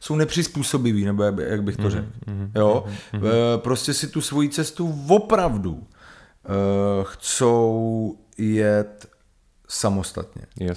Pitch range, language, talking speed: 105-145 Hz, Czech, 95 wpm